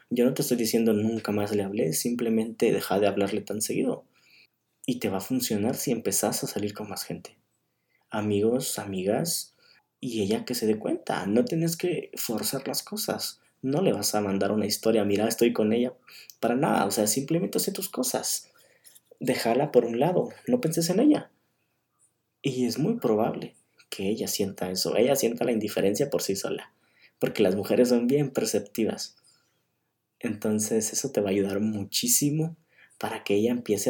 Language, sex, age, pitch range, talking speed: Spanish, male, 20-39, 105-125 Hz, 175 wpm